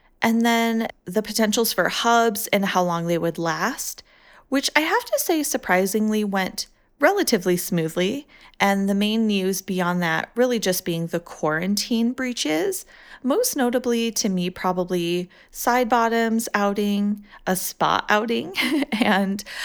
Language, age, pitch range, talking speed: English, 30-49, 180-240 Hz, 135 wpm